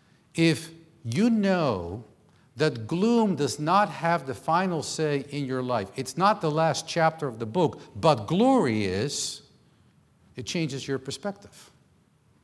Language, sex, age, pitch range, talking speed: English, male, 50-69, 130-185 Hz, 140 wpm